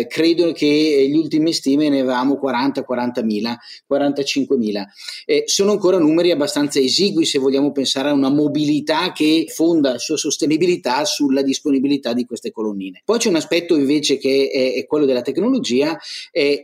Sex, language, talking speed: male, Italian, 160 wpm